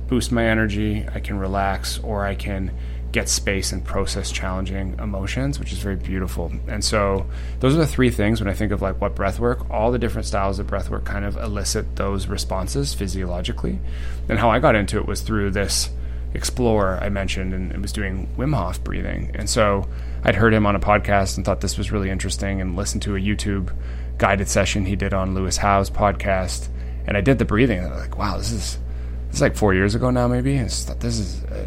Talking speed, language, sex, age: 225 wpm, English, male, 20-39